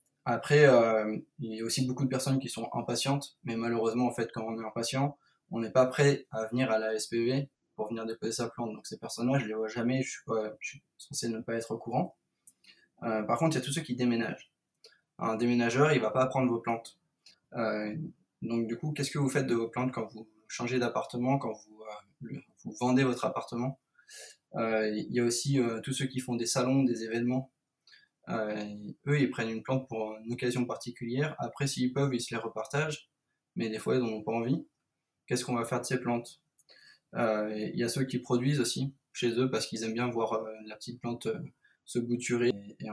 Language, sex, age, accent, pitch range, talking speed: French, male, 20-39, French, 115-130 Hz, 225 wpm